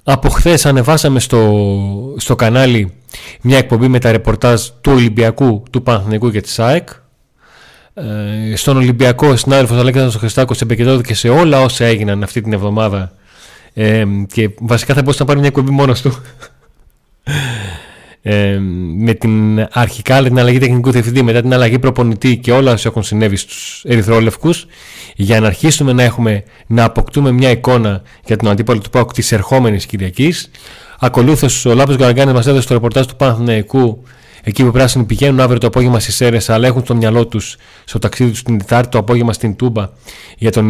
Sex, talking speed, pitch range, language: male, 175 wpm, 110-130 Hz, Greek